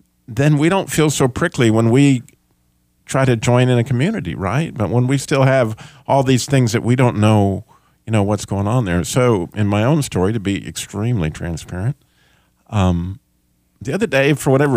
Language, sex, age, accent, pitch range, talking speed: English, male, 50-69, American, 100-135 Hz, 195 wpm